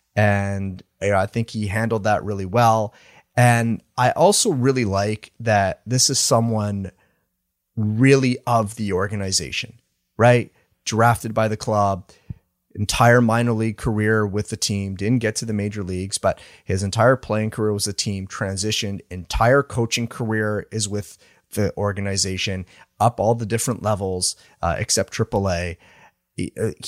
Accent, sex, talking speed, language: American, male, 145 wpm, English